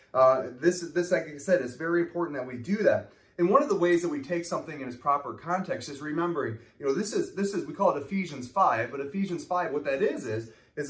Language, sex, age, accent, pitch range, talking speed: English, male, 30-49, American, 120-175 Hz, 260 wpm